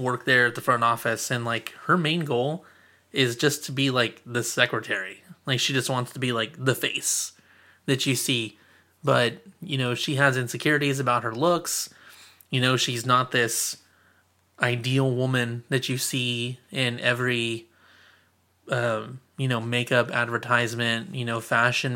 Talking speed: 160 wpm